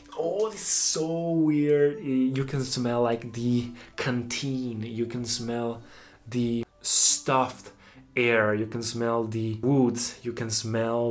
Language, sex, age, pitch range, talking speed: Italian, male, 20-39, 110-125 Hz, 130 wpm